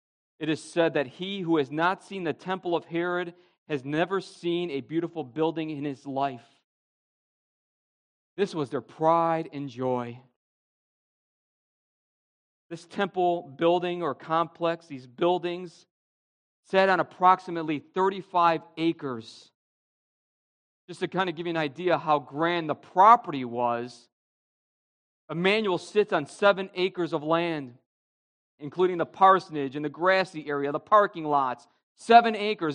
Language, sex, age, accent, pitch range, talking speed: English, male, 40-59, American, 160-200 Hz, 130 wpm